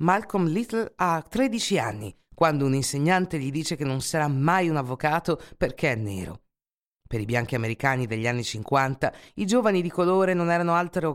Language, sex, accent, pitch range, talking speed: Italian, female, native, 130-190 Hz, 180 wpm